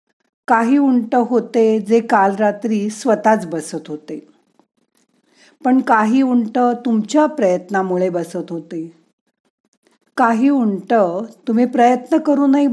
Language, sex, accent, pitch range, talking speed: Marathi, female, native, 185-245 Hz, 100 wpm